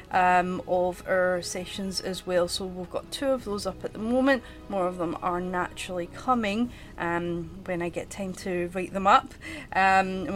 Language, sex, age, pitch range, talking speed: English, female, 30-49, 180-215 Hz, 190 wpm